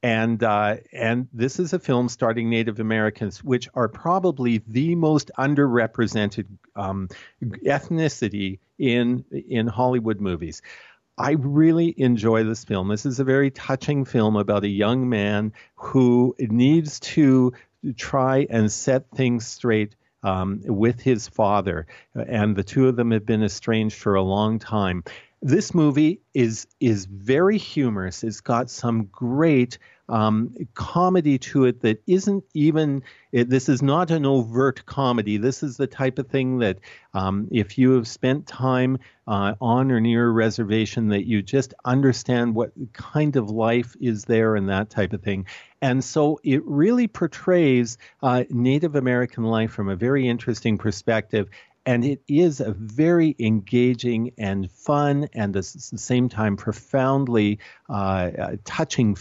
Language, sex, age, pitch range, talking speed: English, male, 50-69, 105-135 Hz, 150 wpm